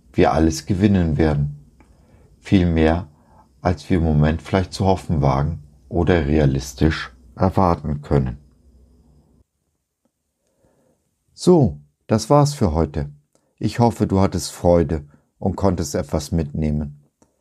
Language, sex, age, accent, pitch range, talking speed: German, male, 50-69, German, 75-100 Hz, 110 wpm